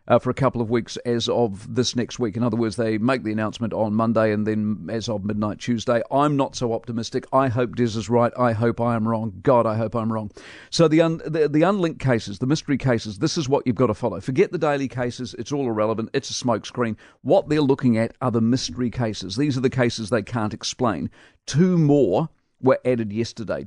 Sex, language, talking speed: male, English, 235 wpm